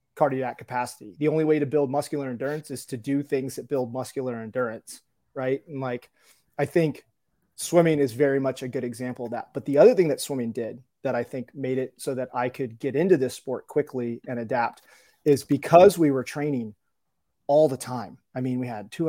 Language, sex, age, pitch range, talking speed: English, male, 30-49, 125-150 Hz, 210 wpm